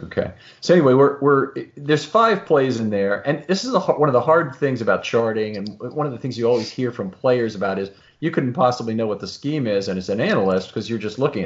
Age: 40-59